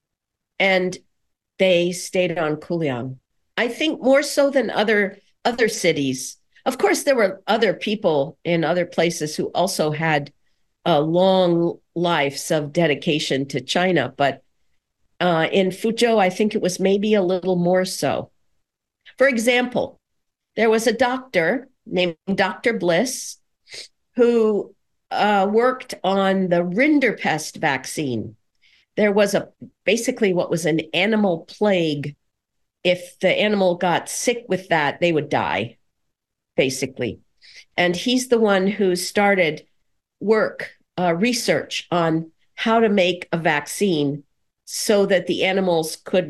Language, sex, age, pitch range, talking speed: English, female, 50-69, 165-215 Hz, 130 wpm